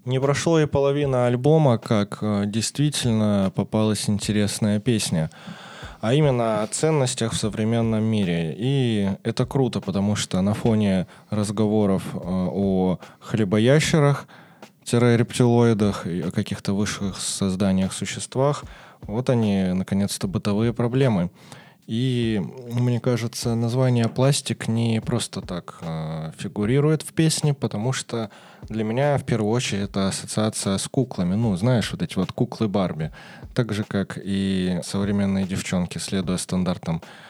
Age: 20-39